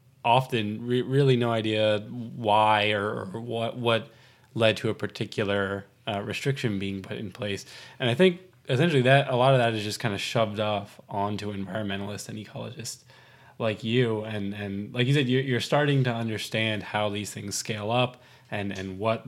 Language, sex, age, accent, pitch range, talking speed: English, male, 20-39, American, 105-125 Hz, 180 wpm